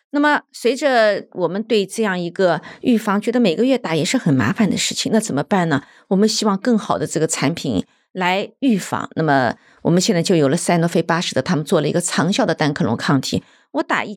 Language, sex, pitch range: Chinese, female, 170-235 Hz